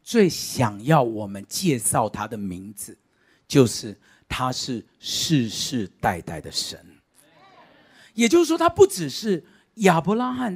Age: 50-69